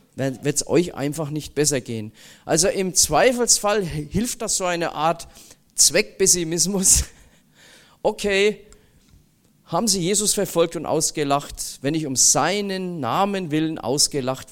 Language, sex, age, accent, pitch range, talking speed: German, male, 40-59, German, 130-185 Hz, 125 wpm